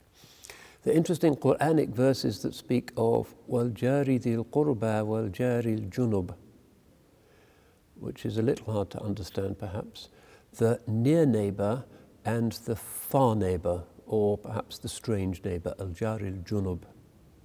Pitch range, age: 100-120 Hz, 60-79